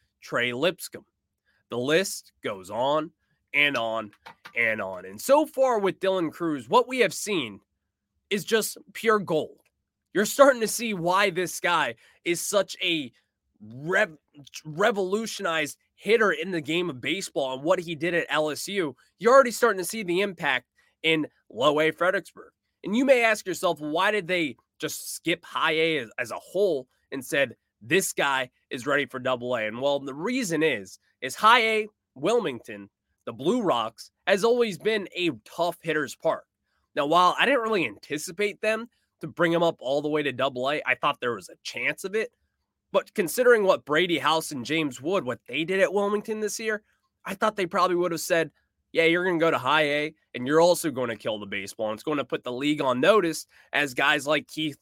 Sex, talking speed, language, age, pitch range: male, 195 wpm, English, 20-39, 150-205 Hz